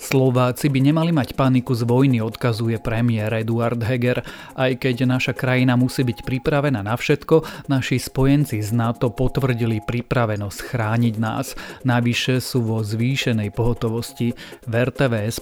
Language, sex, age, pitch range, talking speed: Slovak, male, 30-49, 115-130 Hz, 130 wpm